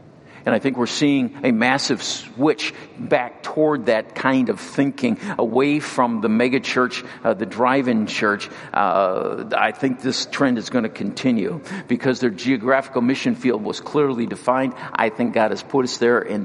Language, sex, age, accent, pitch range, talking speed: English, male, 50-69, American, 110-140 Hz, 170 wpm